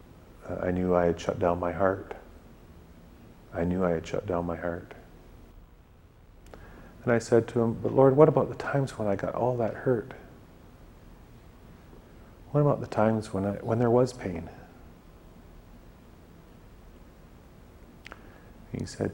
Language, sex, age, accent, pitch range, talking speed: English, male, 40-59, American, 85-105 Hz, 140 wpm